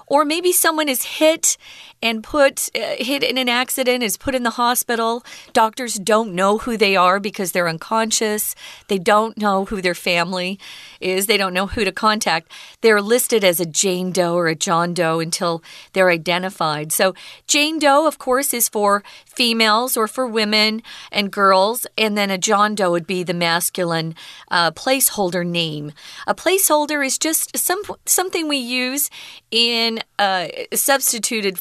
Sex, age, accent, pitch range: female, 40-59, American, 185-260 Hz